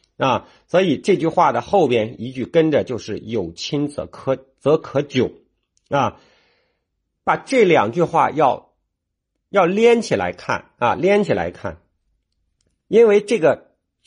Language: Chinese